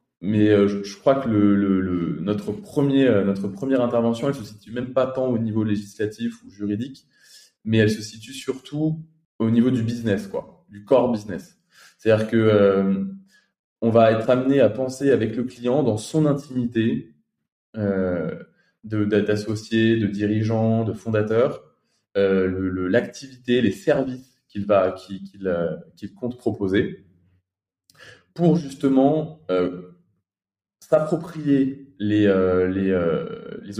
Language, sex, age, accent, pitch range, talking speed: French, male, 20-39, French, 100-130 Hz, 145 wpm